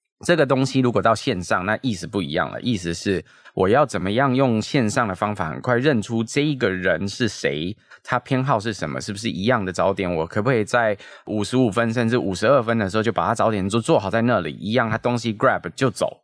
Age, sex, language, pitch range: 20-39, male, Chinese, 95-125 Hz